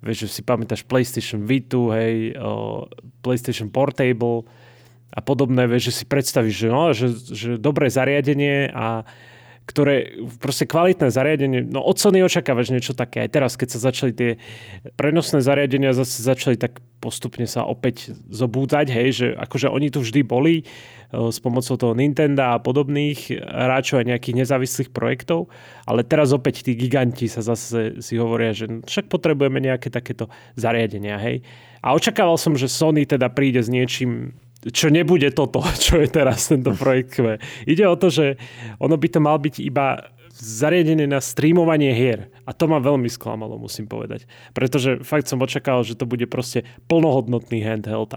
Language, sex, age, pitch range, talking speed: Slovak, male, 30-49, 120-145 Hz, 160 wpm